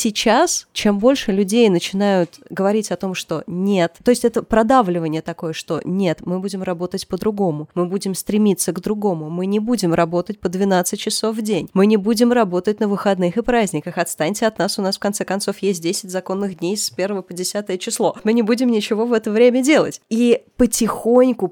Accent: native